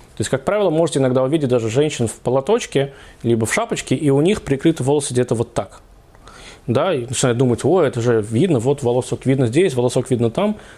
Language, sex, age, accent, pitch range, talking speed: Russian, male, 20-39, native, 115-150 Hz, 205 wpm